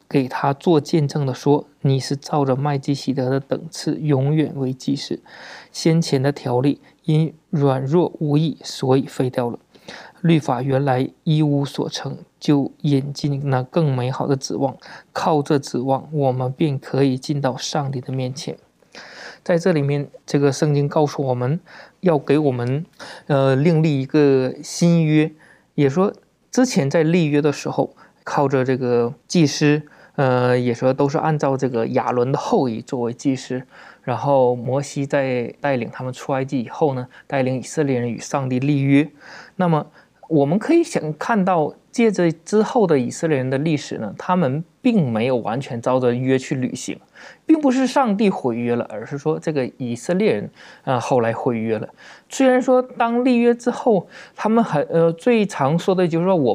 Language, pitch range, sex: Chinese, 130-165 Hz, male